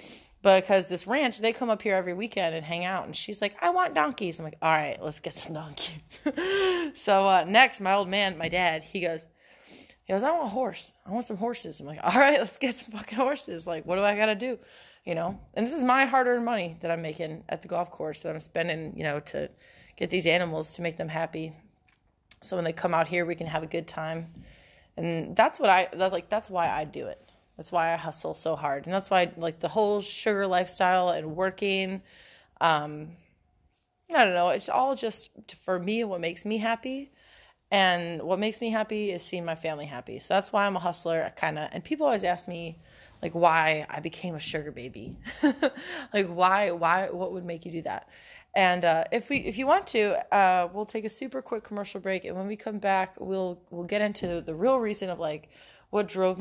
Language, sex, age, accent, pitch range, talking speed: English, female, 20-39, American, 165-215 Hz, 225 wpm